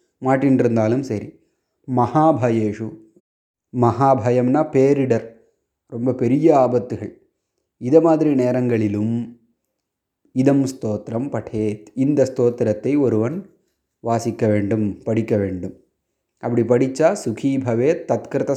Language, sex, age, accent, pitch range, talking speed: Tamil, male, 30-49, native, 115-135 Hz, 80 wpm